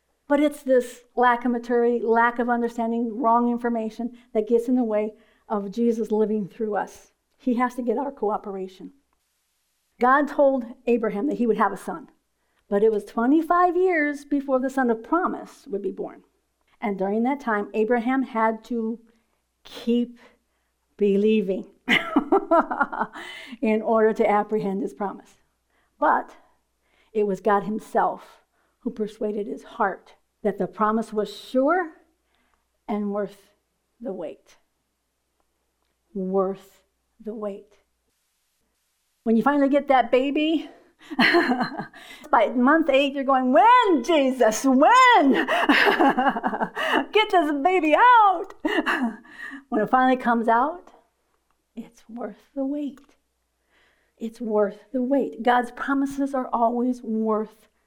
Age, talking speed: 50-69, 125 wpm